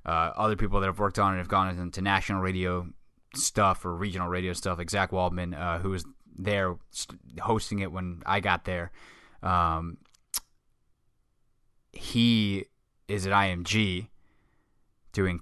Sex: male